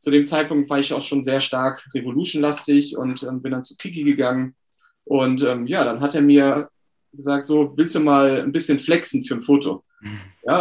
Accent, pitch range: German, 130-155 Hz